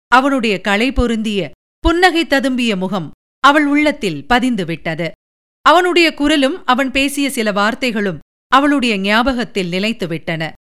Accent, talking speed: native, 100 wpm